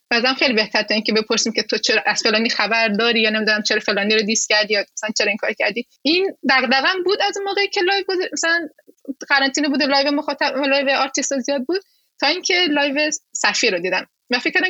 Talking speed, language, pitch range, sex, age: 205 wpm, English, 225-300 Hz, female, 20-39